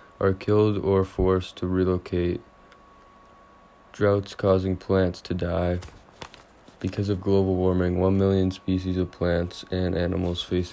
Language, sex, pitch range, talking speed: English, male, 90-100 Hz, 130 wpm